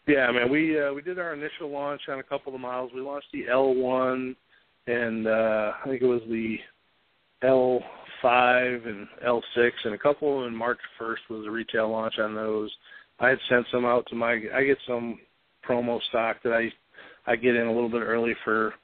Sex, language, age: male, English, 40-59